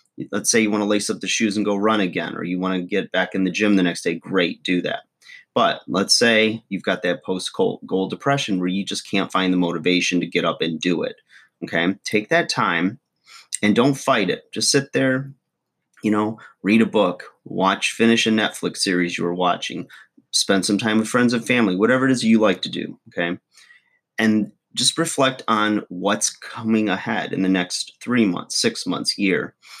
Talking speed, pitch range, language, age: 205 wpm, 90-105 Hz, English, 30-49